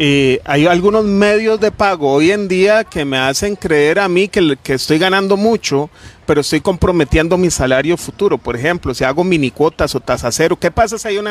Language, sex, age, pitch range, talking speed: Spanish, male, 40-59, 150-210 Hz, 210 wpm